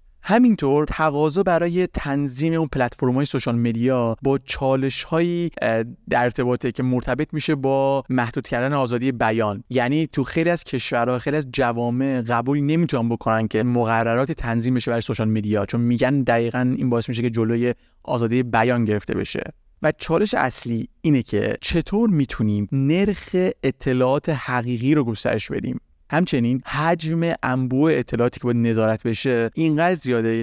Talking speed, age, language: 145 wpm, 30-49, Persian